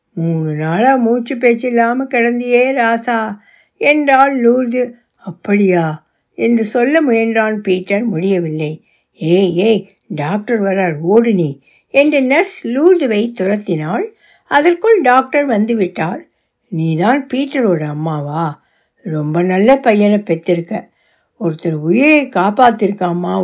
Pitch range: 185-250 Hz